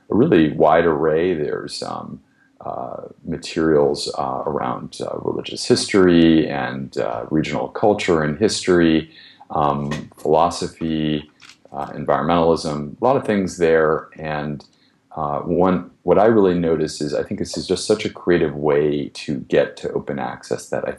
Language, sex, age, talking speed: English, male, 40-59, 150 wpm